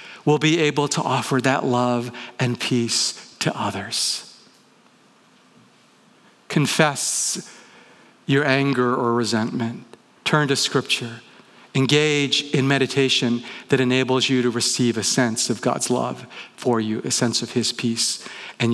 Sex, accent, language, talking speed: male, American, English, 130 wpm